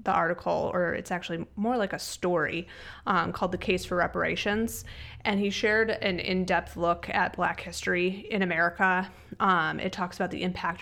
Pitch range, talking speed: 170-200 Hz, 175 wpm